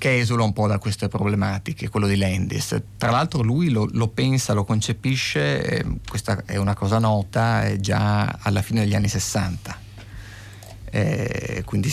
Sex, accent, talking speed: male, native, 160 wpm